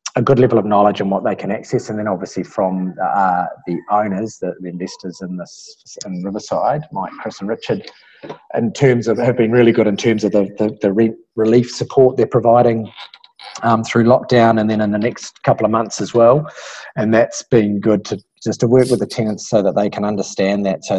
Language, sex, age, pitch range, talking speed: English, male, 30-49, 95-115 Hz, 220 wpm